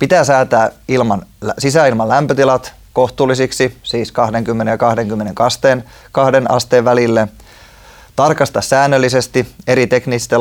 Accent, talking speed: native, 105 wpm